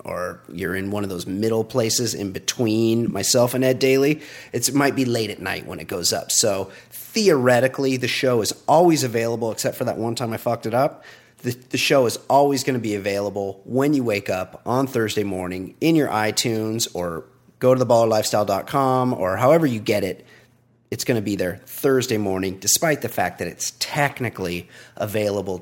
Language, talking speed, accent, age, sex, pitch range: English, 190 wpm, American, 30-49, male, 105-135 Hz